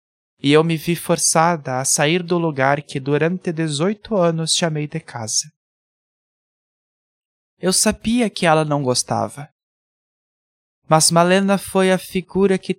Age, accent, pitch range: 20-39, Brazilian, 155-195 Hz